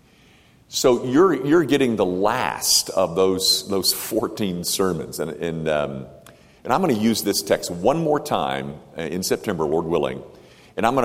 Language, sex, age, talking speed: English, male, 50-69, 170 wpm